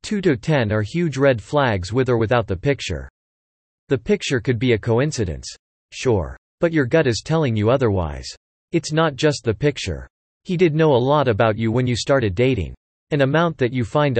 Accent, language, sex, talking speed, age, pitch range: American, English, male, 190 wpm, 40-59, 110-150 Hz